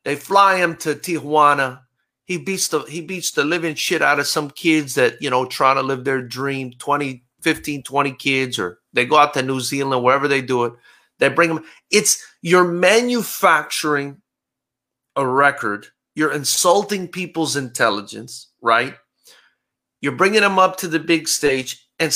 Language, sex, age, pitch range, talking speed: English, male, 30-49, 135-175 Hz, 170 wpm